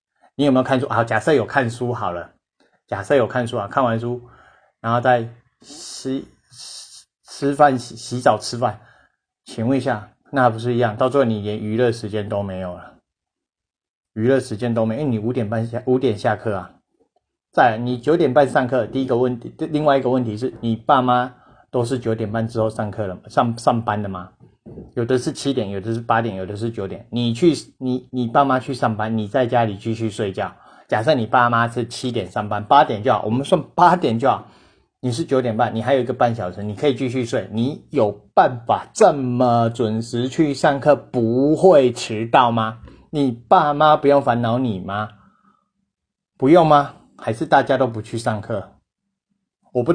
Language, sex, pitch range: Chinese, male, 115-135 Hz